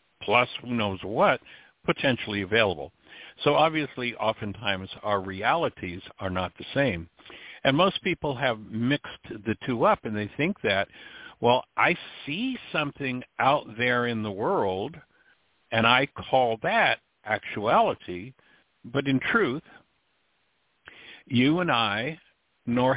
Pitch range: 110-140 Hz